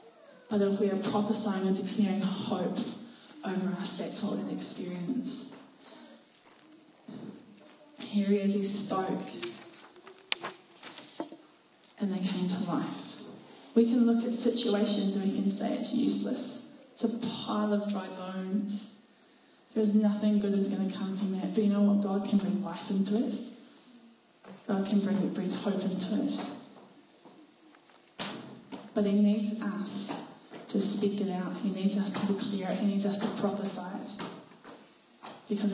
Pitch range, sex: 195-225 Hz, female